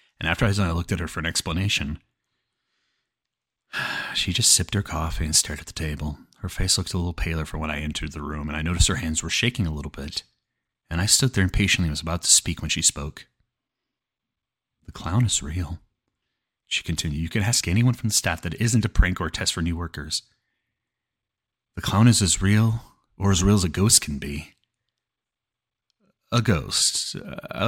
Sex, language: male, English